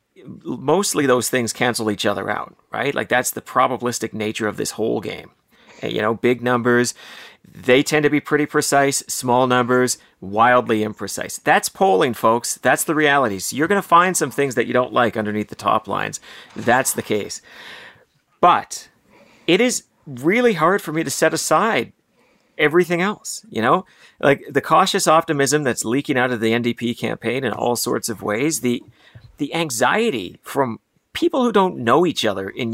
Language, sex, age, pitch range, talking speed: English, male, 40-59, 115-150 Hz, 175 wpm